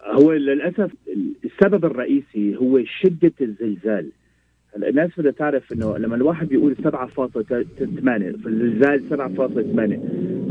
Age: 40-59